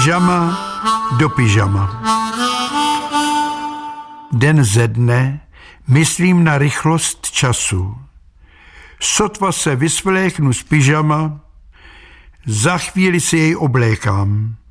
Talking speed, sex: 80 wpm, male